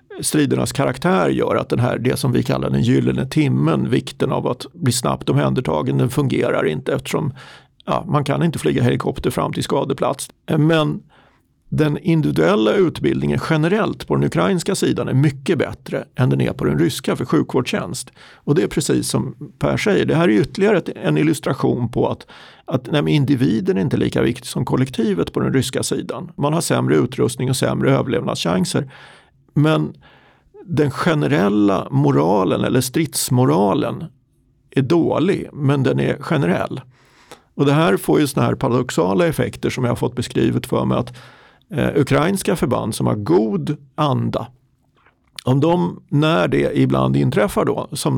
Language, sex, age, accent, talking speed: Swedish, male, 50-69, native, 165 wpm